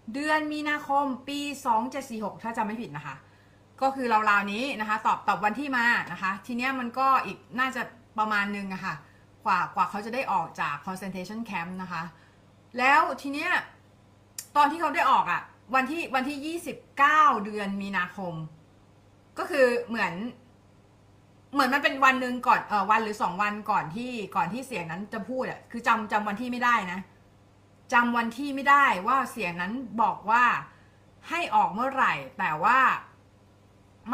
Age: 30-49